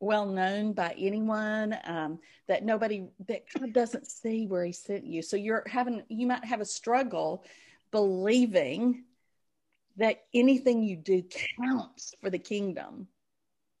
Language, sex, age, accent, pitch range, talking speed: English, female, 40-59, American, 185-235 Hz, 130 wpm